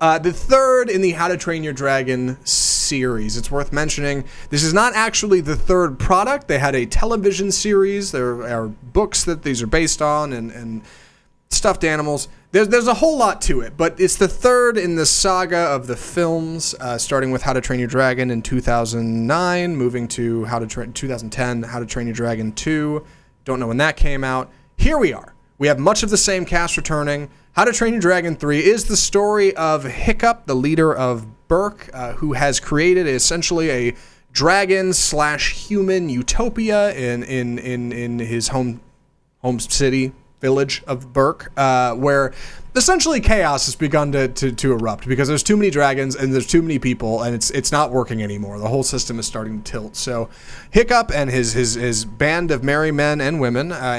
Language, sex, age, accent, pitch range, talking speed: English, male, 30-49, American, 120-165 Hz, 195 wpm